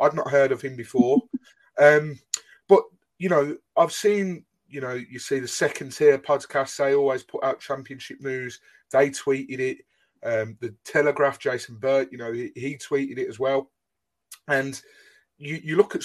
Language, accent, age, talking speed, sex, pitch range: English, British, 30-49, 175 wpm, male, 135-205 Hz